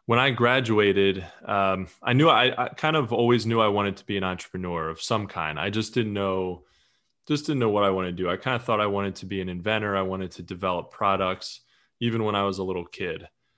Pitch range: 90-105 Hz